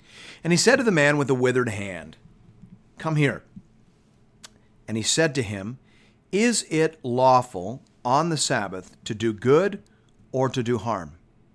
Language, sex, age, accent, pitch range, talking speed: English, male, 40-59, American, 110-165 Hz, 155 wpm